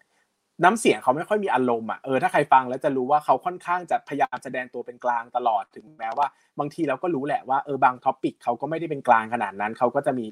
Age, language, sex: 20-39, Thai, male